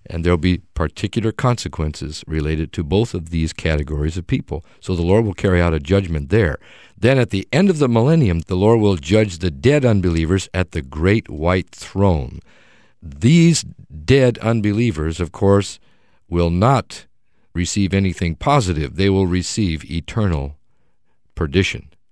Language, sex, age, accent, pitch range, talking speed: English, male, 50-69, American, 85-115 Hz, 150 wpm